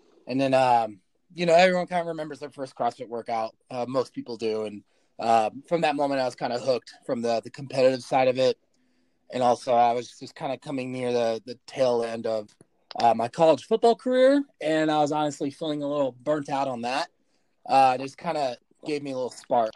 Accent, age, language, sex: American, 30-49, English, male